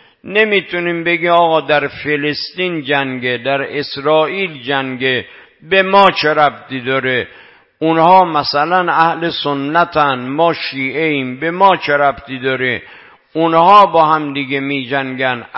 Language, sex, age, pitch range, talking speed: Persian, male, 50-69, 140-170 Hz, 120 wpm